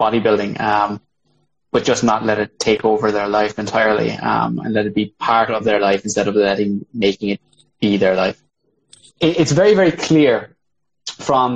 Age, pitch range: 20-39, 110-130 Hz